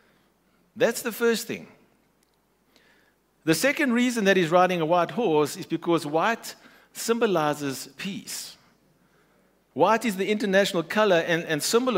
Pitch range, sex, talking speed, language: 165-220 Hz, male, 130 wpm, English